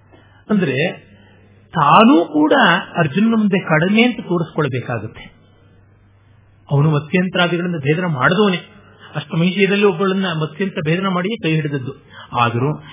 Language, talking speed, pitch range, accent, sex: Kannada, 95 wpm, 130-195 Hz, native, male